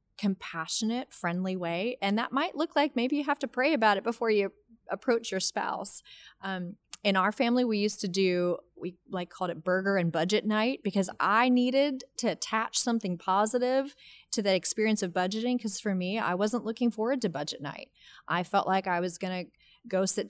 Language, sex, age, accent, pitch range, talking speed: English, female, 30-49, American, 180-225 Hz, 195 wpm